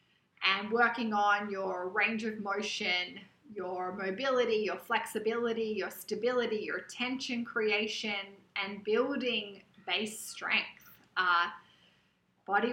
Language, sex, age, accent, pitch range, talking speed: English, female, 20-39, Australian, 200-250 Hz, 105 wpm